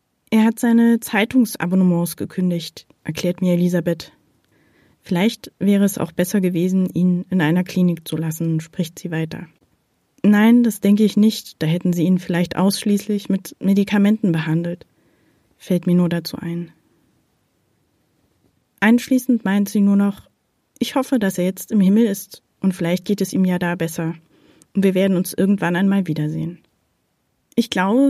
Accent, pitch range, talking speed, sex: German, 170-210 Hz, 155 wpm, female